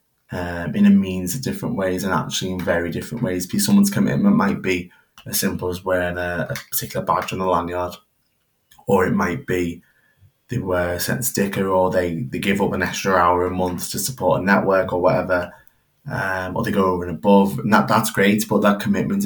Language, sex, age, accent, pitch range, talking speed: English, male, 20-39, British, 90-100 Hz, 210 wpm